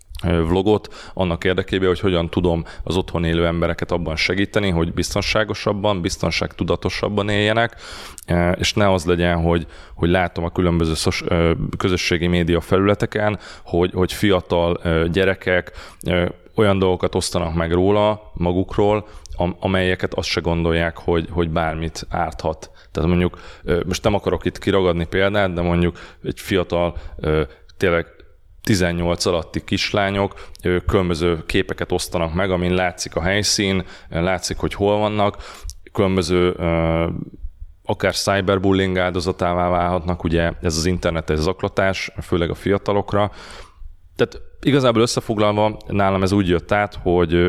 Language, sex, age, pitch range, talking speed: Hungarian, male, 30-49, 85-100 Hz, 120 wpm